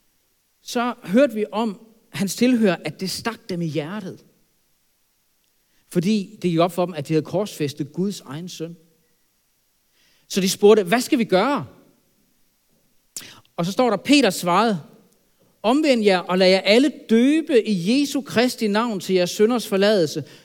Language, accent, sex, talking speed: Danish, native, male, 155 wpm